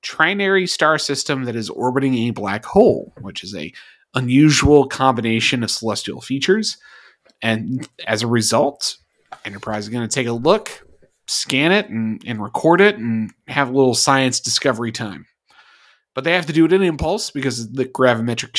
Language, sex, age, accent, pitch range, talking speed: English, male, 30-49, American, 115-145 Hz, 170 wpm